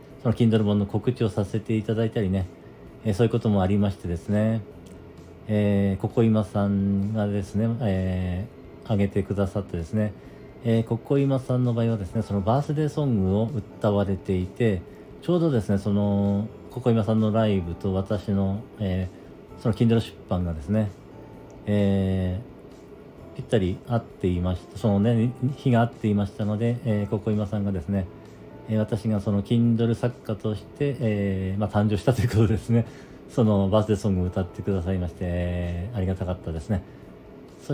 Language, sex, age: Japanese, male, 40-59